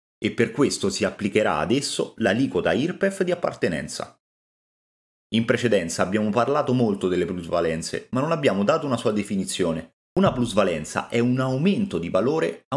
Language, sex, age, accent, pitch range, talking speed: Italian, male, 30-49, native, 90-150 Hz, 150 wpm